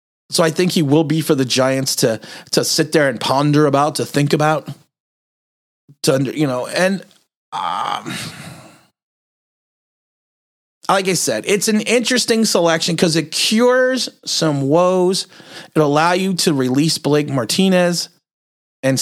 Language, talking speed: English, 140 wpm